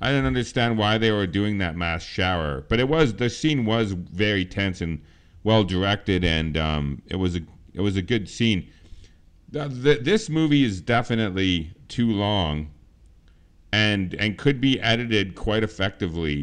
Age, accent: 40-59, American